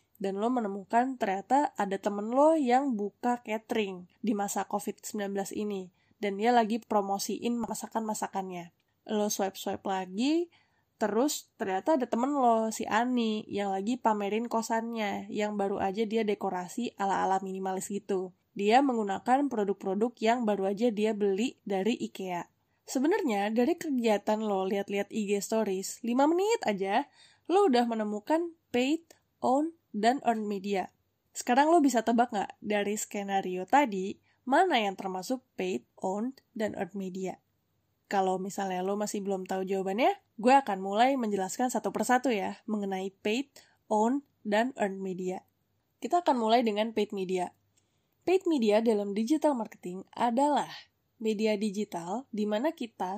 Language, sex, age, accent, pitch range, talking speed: Indonesian, female, 10-29, native, 195-245 Hz, 140 wpm